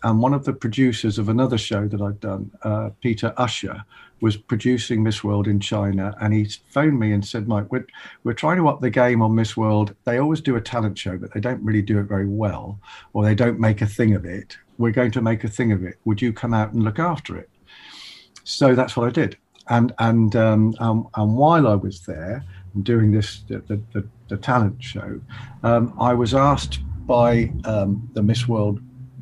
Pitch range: 105-125 Hz